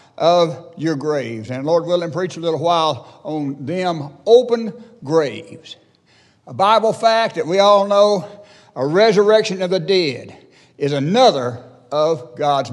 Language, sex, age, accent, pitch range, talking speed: English, male, 60-79, American, 150-205 Hz, 140 wpm